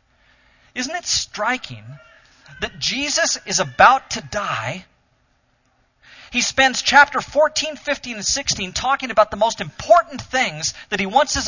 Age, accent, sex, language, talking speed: 40-59, American, male, English, 135 wpm